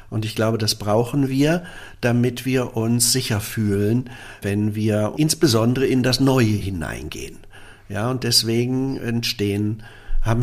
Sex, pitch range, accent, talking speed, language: male, 110-130 Hz, German, 130 wpm, German